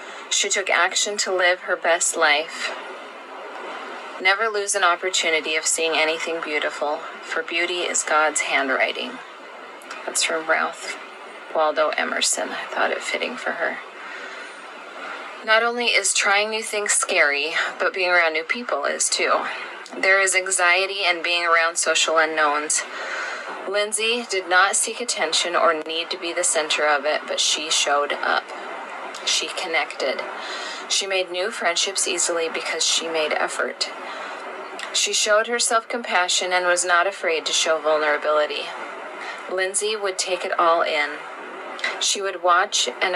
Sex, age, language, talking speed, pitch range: female, 30-49, English, 145 wpm, 165-205 Hz